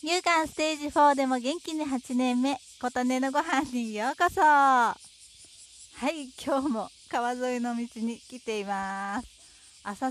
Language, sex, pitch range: Japanese, female, 195-260 Hz